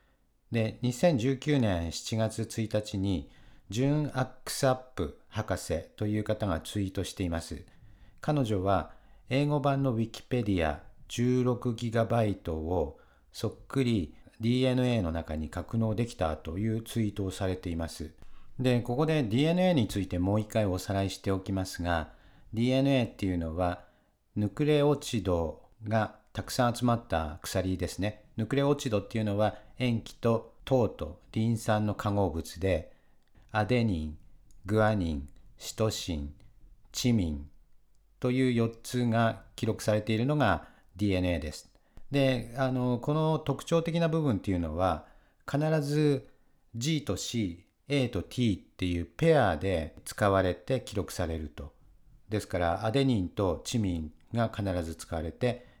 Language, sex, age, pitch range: English, male, 50-69, 90-125 Hz